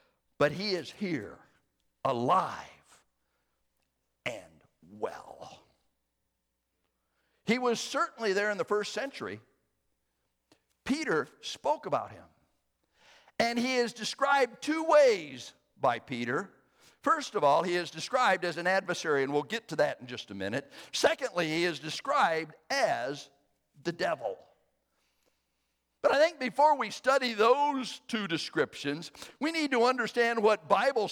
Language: English